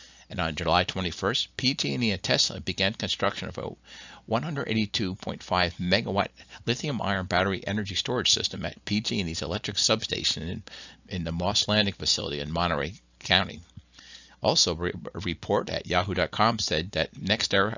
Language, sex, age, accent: English, male, 60-79, American